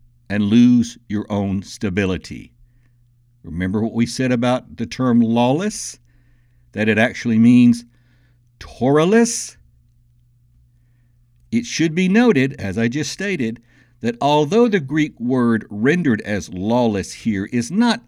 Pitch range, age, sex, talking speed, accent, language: 110-140 Hz, 60-79, male, 125 wpm, American, English